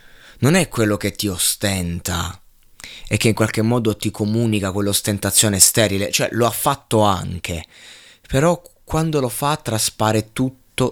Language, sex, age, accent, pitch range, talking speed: Italian, male, 20-39, native, 95-115 Hz, 145 wpm